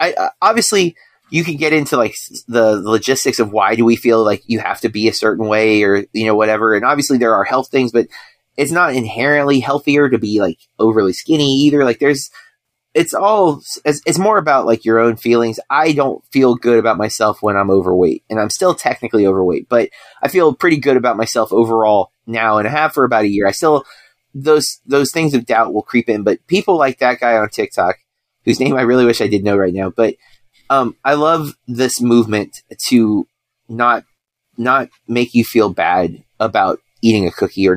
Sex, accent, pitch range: male, American, 110-140 Hz